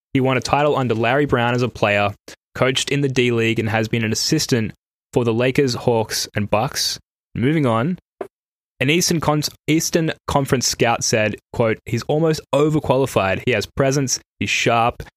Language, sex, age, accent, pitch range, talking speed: English, male, 10-29, Australian, 110-130 Hz, 170 wpm